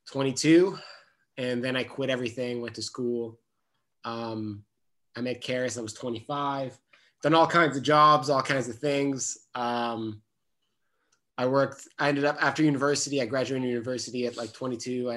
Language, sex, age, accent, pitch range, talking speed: English, male, 20-39, American, 115-135 Hz, 155 wpm